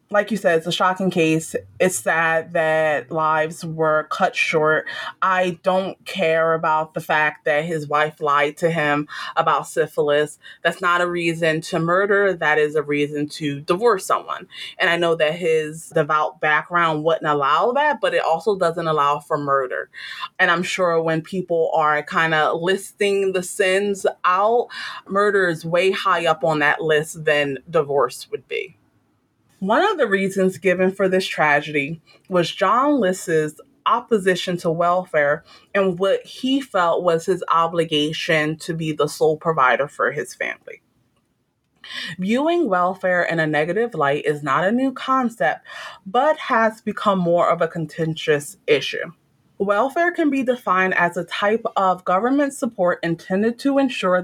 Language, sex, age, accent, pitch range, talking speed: English, female, 30-49, American, 155-200 Hz, 160 wpm